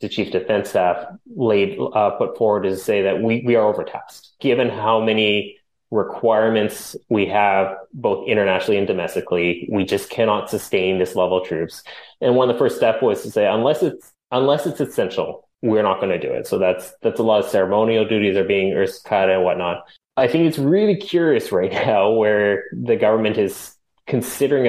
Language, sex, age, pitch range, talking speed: English, male, 30-49, 100-130 Hz, 195 wpm